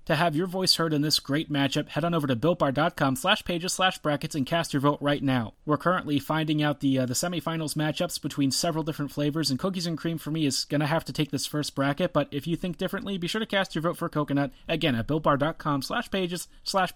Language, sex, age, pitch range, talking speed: English, male, 30-49, 140-170 Hz, 245 wpm